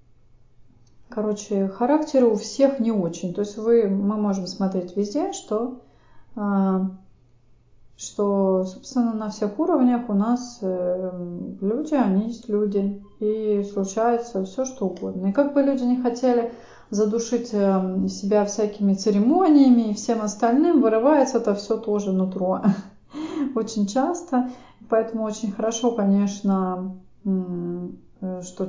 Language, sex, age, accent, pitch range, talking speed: Russian, female, 30-49, native, 190-235 Hz, 115 wpm